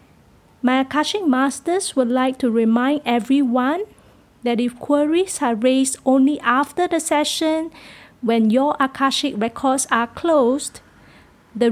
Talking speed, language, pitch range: 125 wpm, English, 250-290 Hz